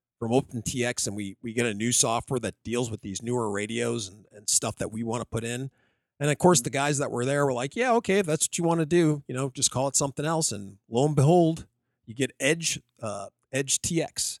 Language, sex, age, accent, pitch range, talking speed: English, male, 40-59, American, 115-150 Hz, 250 wpm